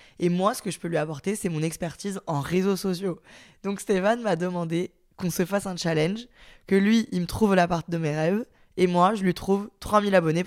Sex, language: female, French